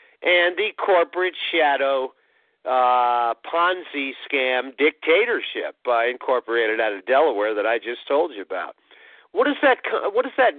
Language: English